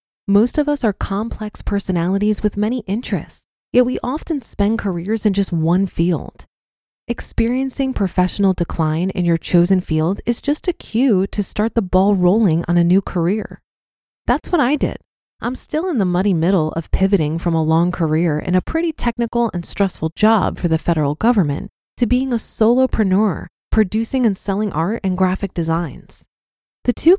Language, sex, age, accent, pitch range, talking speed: English, female, 20-39, American, 180-230 Hz, 170 wpm